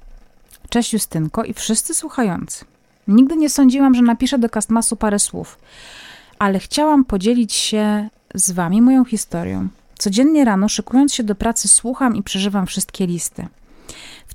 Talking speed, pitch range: 140 wpm, 185-240 Hz